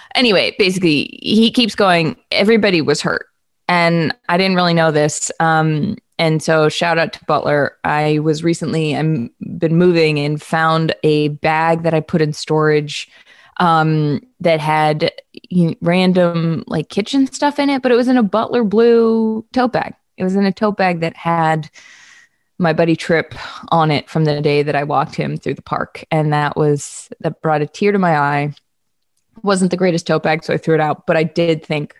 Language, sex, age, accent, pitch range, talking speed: English, female, 20-39, American, 155-205 Hz, 190 wpm